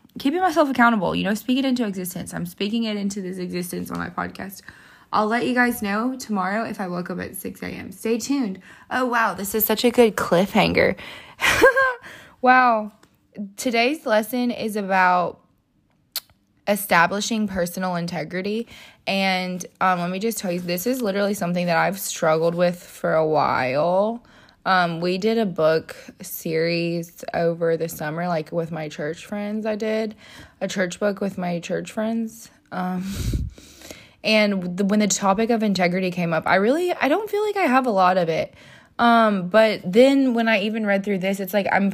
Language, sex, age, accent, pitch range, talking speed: English, female, 20-39, American, 180-225 Hz, 175 wpm